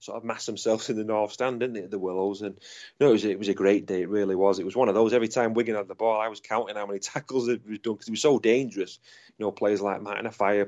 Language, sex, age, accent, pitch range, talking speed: English, male, 30-49, British, 100-115 Hz, 320 wpm